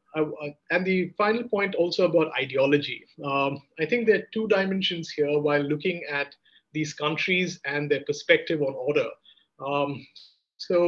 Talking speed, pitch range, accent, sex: 155 wpm, 140-175 Hz, Indian, male